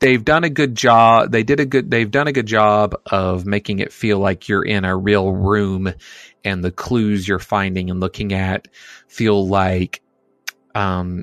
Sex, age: male, 30-49